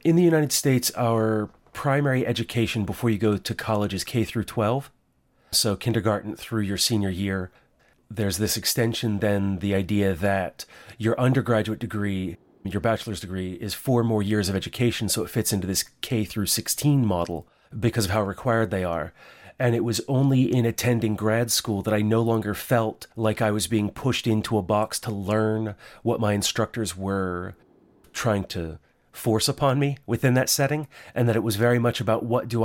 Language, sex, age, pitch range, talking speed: English, male, 30-49, 100-115 Hz, 185 wpm